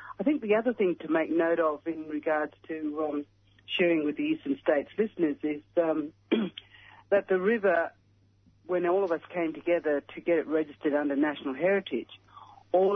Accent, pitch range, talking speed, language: Australian, 145-170 Hz, 175 wpm, English